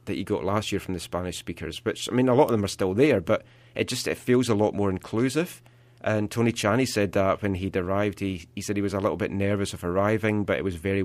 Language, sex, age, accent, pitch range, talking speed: English, male, 30-49, British, 100-120 Hz, 275 wpm